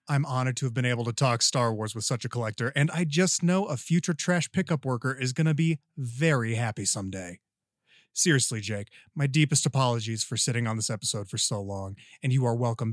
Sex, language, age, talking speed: male, English, 30-49, 220 wpm